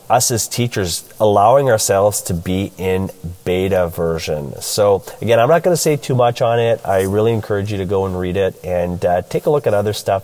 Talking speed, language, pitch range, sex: 225 wpm, English, 95-115 Hz, male